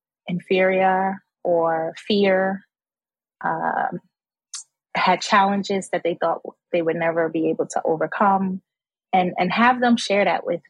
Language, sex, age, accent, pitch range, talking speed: English, female, 20-39, American, 170-195 Hz, 130 wpm